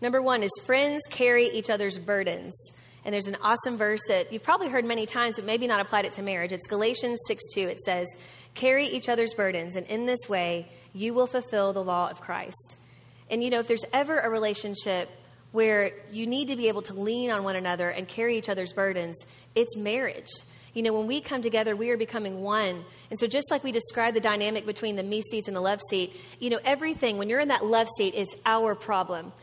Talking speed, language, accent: 225 wpm, English, American